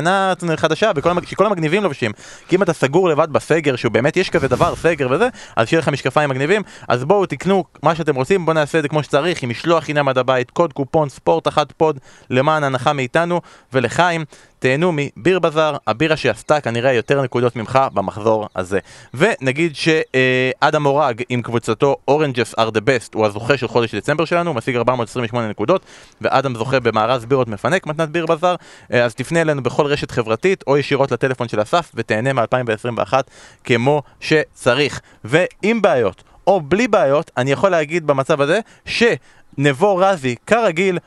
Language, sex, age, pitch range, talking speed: Hebrew, male, 20-39, 125-165 Hz, 170 wpm